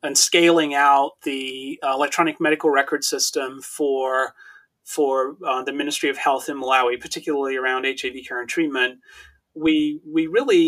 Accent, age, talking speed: American, 30-49, 145 wpm